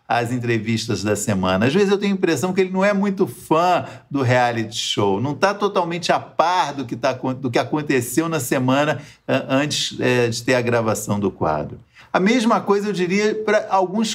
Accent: Brazilian